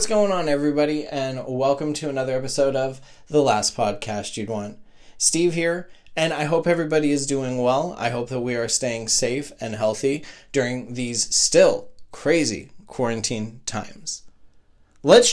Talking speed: 155 wpm